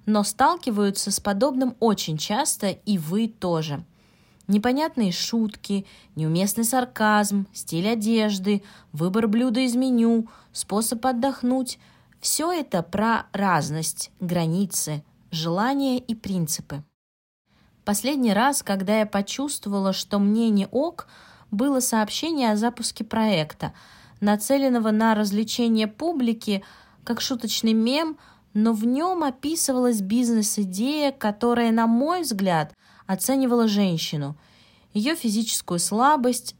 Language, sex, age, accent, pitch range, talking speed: Russian, female, 20-39, native, 185-240 Hz, 105 wpm